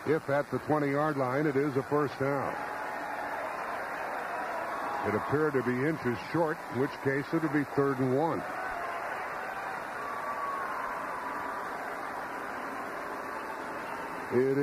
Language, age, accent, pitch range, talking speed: English, 60-79, American, 135-160 Hz, 105 wpm